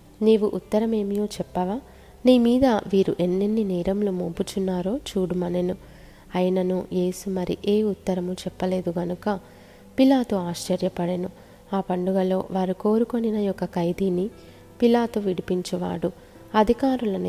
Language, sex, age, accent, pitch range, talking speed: Telugu, female, 20-39, native, 180-210 Hz, 95 wpm